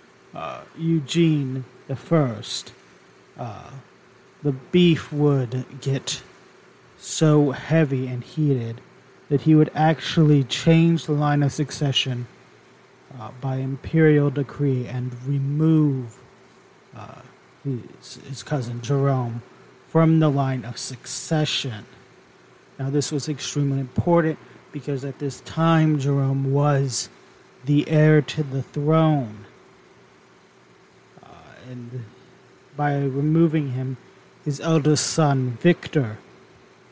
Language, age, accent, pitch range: English, 30-49, American, 130-155 Hz